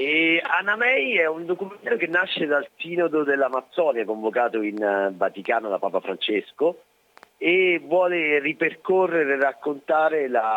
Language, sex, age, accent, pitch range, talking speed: Italian, male, 40-59, native, 95-145 Hz, 125 wpm